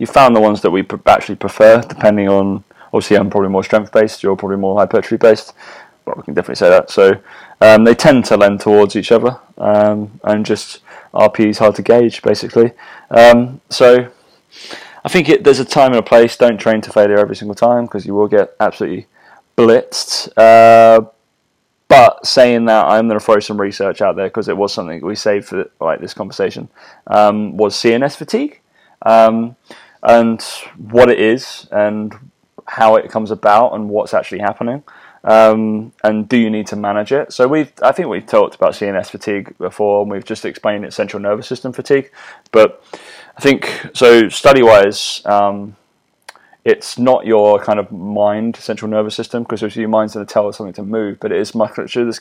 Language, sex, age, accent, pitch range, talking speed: English, male, 20-39, British, 105-120 Hz, 195 wpm